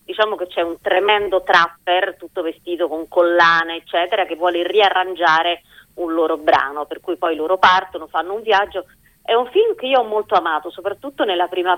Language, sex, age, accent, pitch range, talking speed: Italian, female, 30-49, native, 165-205 Hz, 185 wpm